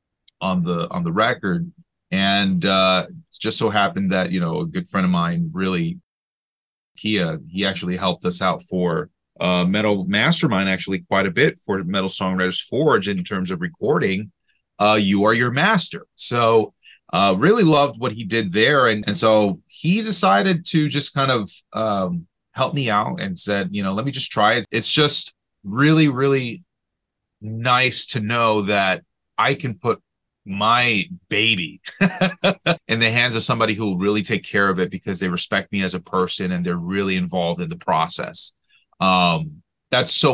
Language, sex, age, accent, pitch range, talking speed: English, male, 30-49, American, 95-140 Hz, 175 wpm